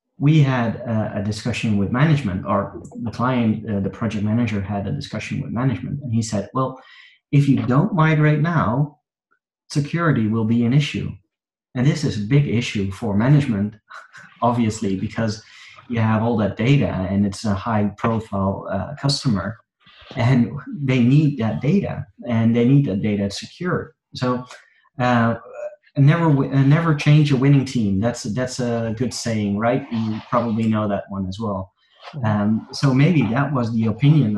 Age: 30-49